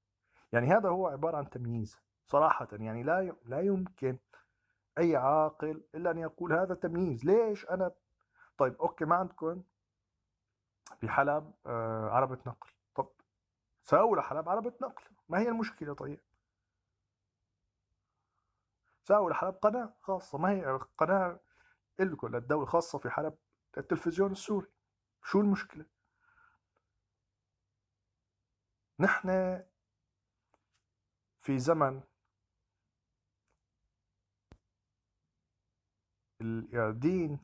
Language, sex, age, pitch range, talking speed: Arabic, male, 40-59, 105-170 Hz, 90 wpm